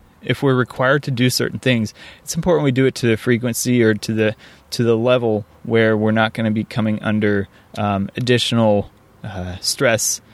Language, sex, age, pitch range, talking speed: English, male, 20-39, 105-125 Hz, 190 wpm